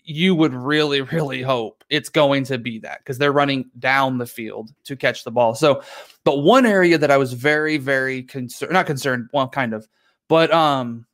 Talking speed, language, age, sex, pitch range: 200 wpm, English, 30-49, male, 125-155 Hz